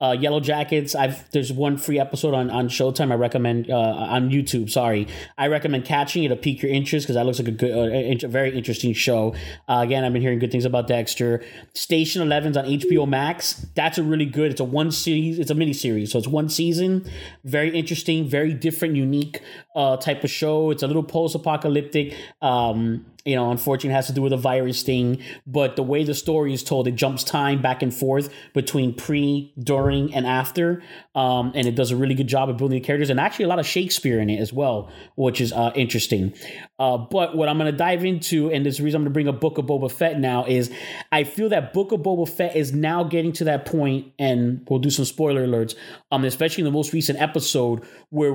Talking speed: 225 wpm